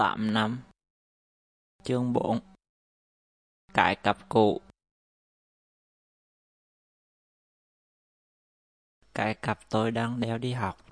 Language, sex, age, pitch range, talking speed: Vietnamese, male, 20-39, 110-120 Hz, 70 wpm